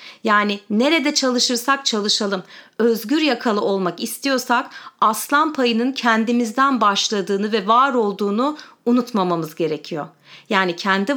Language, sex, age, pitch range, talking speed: Turkish, female, 40-59, 225-285 Hz, 100 wpm